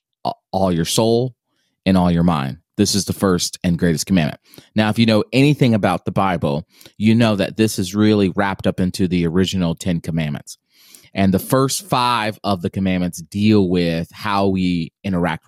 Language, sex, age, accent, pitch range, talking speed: English, male, 30-49, American, 95-125 Hz, 180 wpm